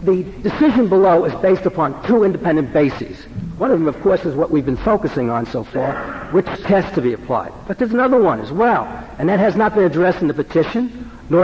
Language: English